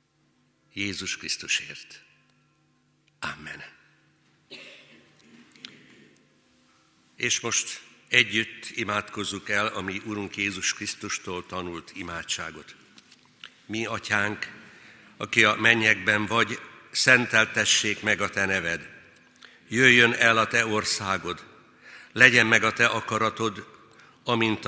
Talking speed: 90 wpm